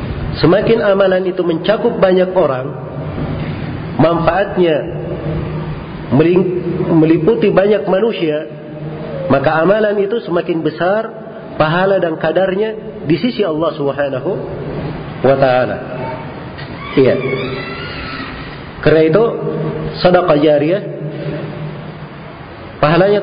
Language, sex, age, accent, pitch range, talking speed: Indonesian, male, 50-69, native, 155-200 Hz, 75 wpm